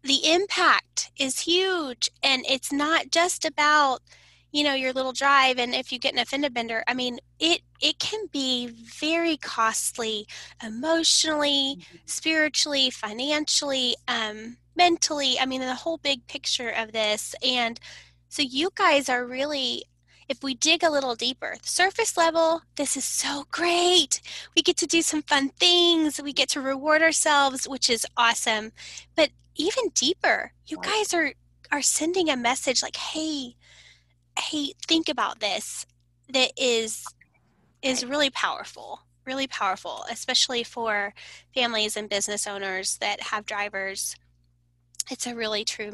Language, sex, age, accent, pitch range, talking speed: English, female, 10-29, American, 225-310 Hz, 145 wpm